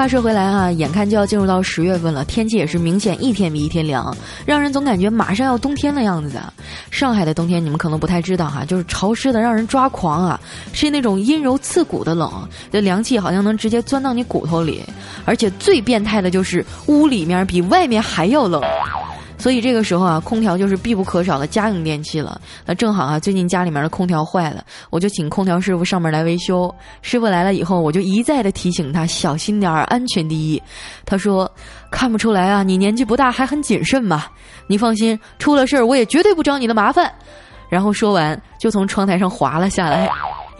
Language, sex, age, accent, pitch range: Chinese, female, 20-39, native, 175-240 Hz